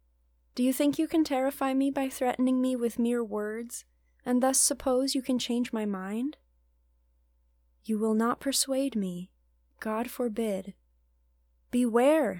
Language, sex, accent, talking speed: English, female, American, 140 wpm